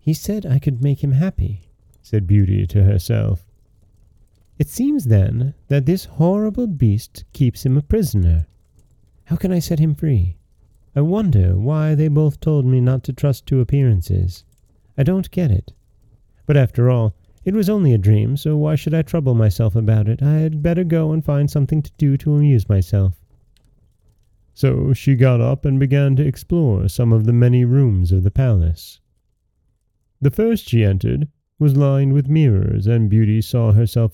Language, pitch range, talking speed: English, 105-145 Hz, 175 wpm